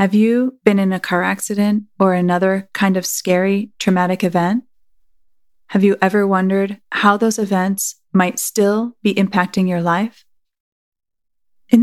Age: 30-49